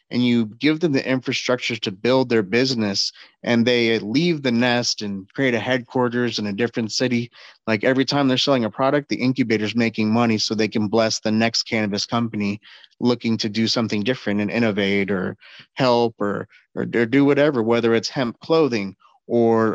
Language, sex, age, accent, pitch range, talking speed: English, male, 30-49, American, 110-130 Hz, 185 wpm